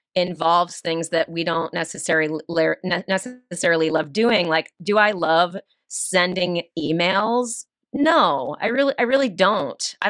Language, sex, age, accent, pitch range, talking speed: English, female, 30-49, American, 160-195 Hz, 130 wpm